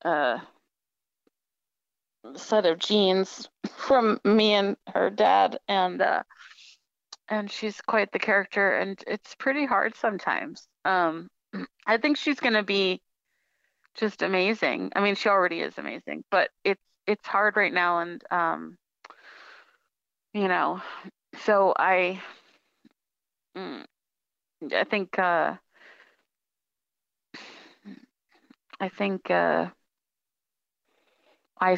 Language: English